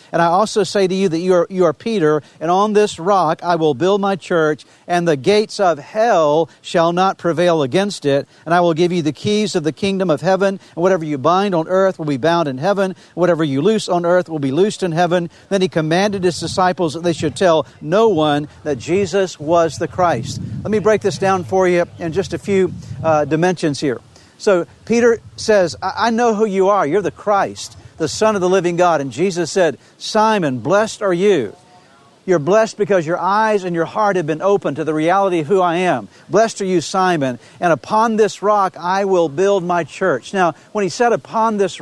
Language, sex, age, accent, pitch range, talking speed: English, male, 50-69, American, 165-195 Hz, 225 wpm